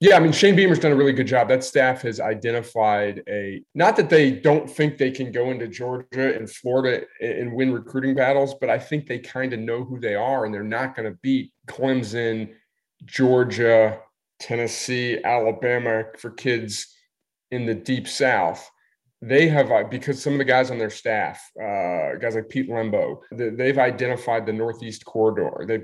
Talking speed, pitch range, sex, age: 185 wpm, 110-135 Hz, male, 30-49